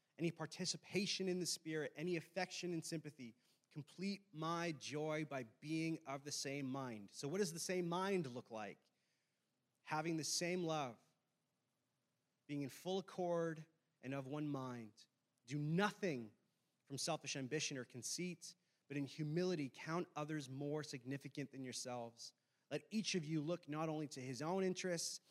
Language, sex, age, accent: English, male, 30-49, American